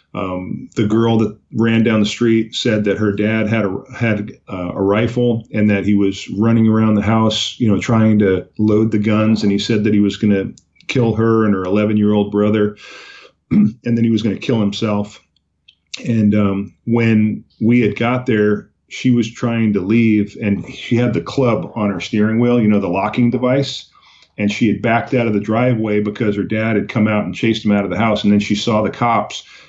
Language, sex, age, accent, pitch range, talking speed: English, male, 40-59, American, 100-115 Hz, 220 wpm